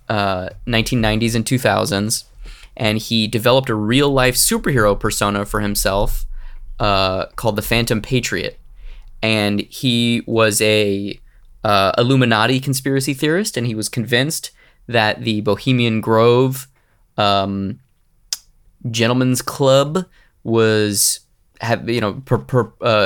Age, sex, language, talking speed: 20-39, male, English, 115 wpm